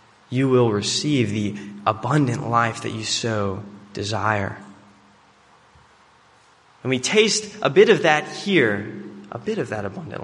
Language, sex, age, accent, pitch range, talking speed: English, male, 20-39, American, 105-140 Hz, 135 wpm